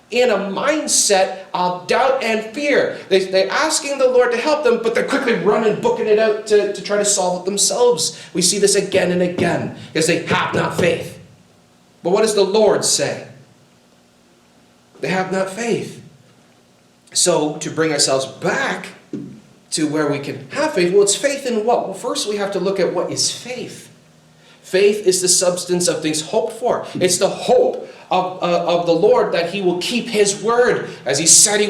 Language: English